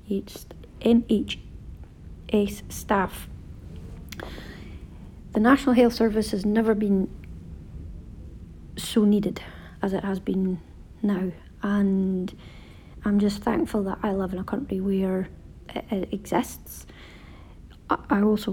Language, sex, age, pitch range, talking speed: English, female, 40-59, 185-215 Hz, 105 wpm